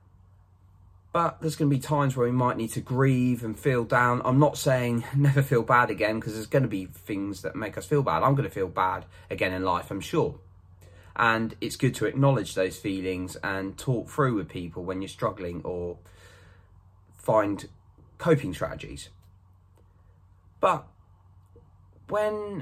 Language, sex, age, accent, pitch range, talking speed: English, male, 20-39, British, 95-145 Hz, 160 wpm